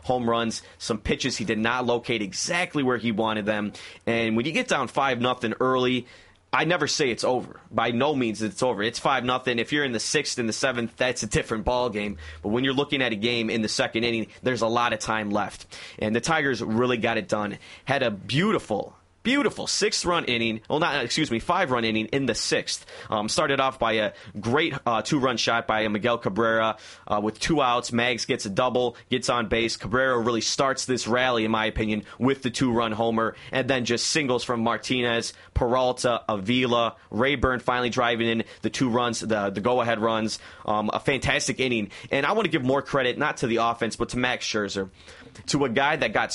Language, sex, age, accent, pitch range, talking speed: English, male, 30-49, American, 110-130 Hz, 210 wpm